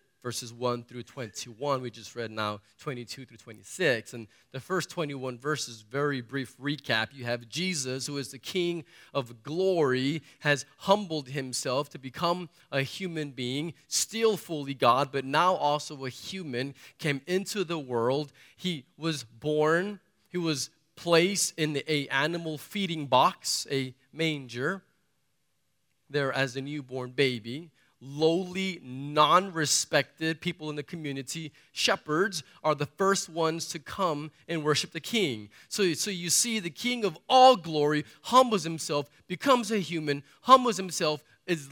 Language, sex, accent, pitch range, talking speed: English, male, American, 130-175 Hz, 145 wpm